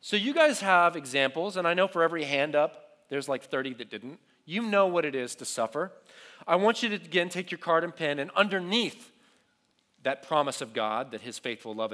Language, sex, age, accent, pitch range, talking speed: English, male, 30-49, American, 130-200 Hz, 220 wpm